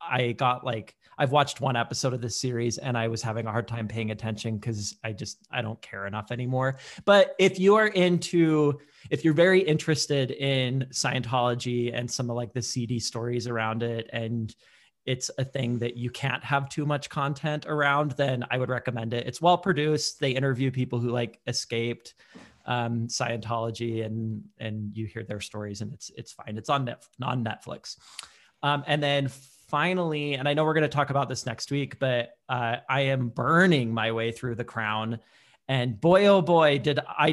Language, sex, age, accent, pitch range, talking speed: English, male, 30-49, American, 115-145 Hz, 190 wpm